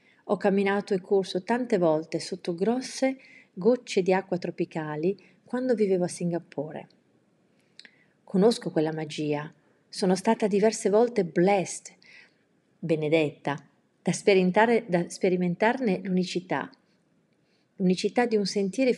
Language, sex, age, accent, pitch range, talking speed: Italian, female, 40-59, native, 165-220 Hz, 105 wpm